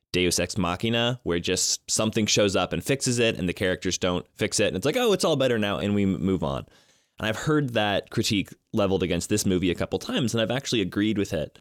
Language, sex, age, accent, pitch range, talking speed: English, male, 20-39, American, 90-115 Hz, 245 wpm